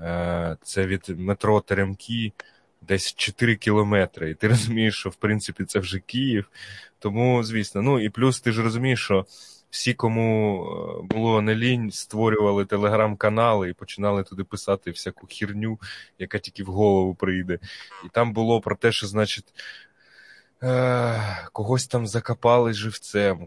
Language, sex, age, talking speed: Ukrainian, male, 20-39, 140 wpm